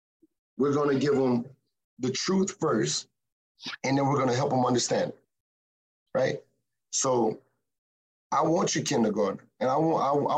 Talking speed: 155 wpm